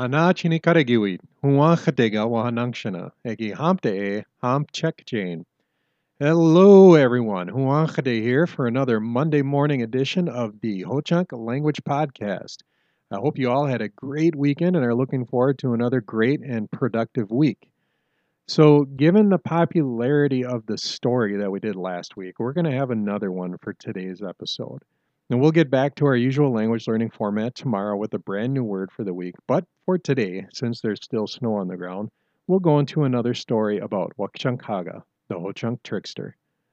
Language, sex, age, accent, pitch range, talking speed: English, male, 40-59, American, 110-155 Hz, 150 wpm